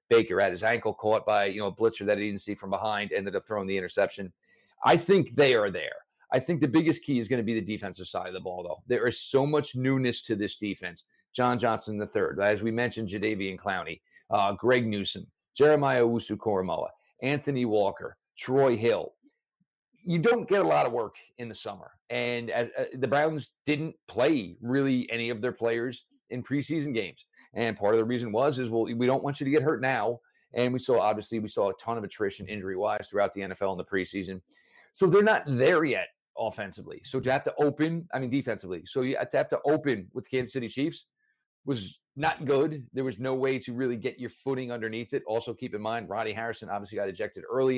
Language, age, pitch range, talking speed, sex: English, 50-69, 110-140 Hz, 220 wpm, male